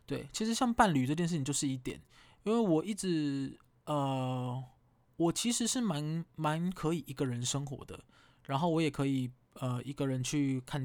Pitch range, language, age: 130-165 Hz, Chinese, 20-39